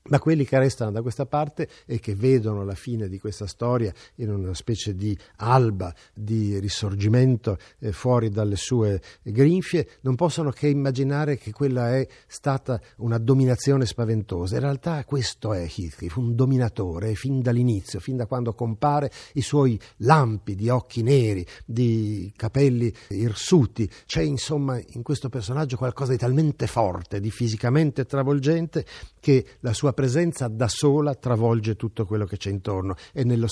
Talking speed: 155 wpm